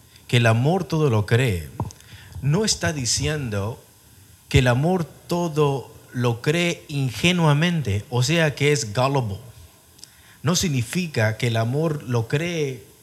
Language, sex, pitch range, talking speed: English, male, 110-150 Hz, 130 wpm